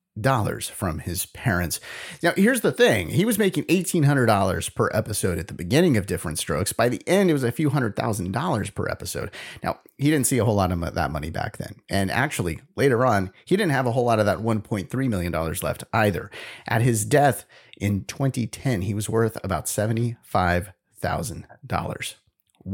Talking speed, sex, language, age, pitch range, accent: 185 wpm, male, English, 30-49, 100-150 Hz, American